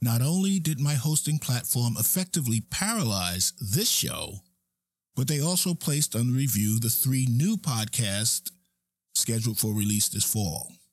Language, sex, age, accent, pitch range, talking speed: English, male, 50-69, American, 95-150 Hz, 135 wpm